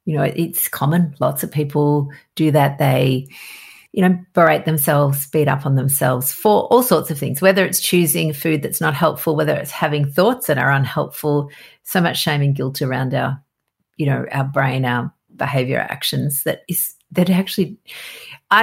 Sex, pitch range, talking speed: female, 140-180 Hz, 180 wpm